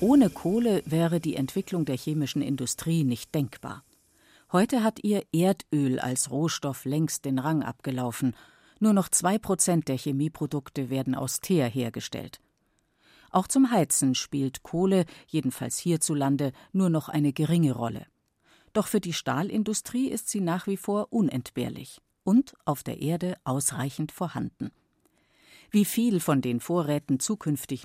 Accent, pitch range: German, 135-185 Hz